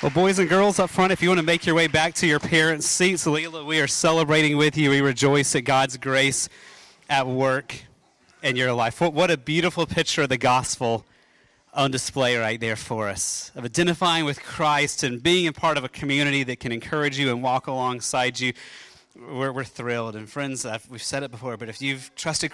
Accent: American